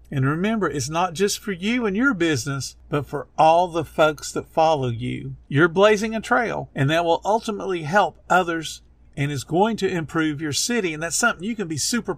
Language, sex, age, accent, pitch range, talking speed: English, male, 50-69, American, 140-185 Hz, 205 wpm